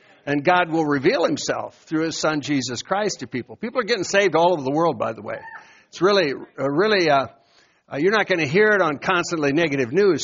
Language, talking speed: English, 215 wpm